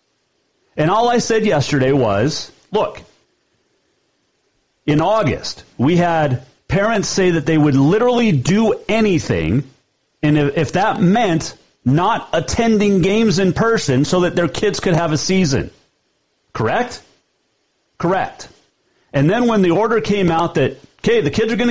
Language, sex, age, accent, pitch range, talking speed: English, male, 40-59, American, 135-215 Hz, 140 wpm